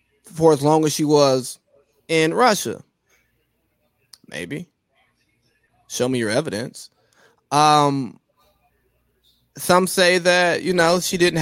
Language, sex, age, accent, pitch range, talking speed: English, male, 20-39, American, 120-150 Hz, 110 wpm